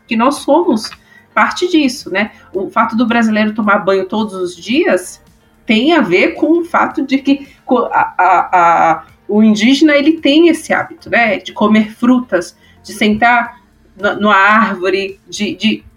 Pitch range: 195-275 Hz